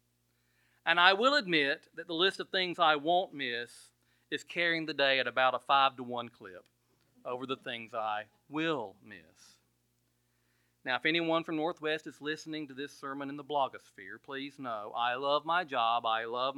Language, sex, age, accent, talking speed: English, male, 40-59, American, 175 wpm